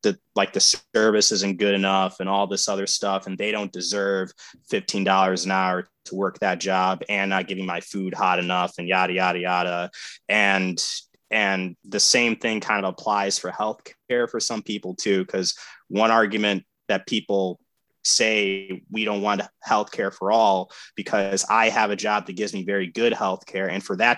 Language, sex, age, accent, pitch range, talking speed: English, male, 20-39, American, 95-110 Hz, 185 wpm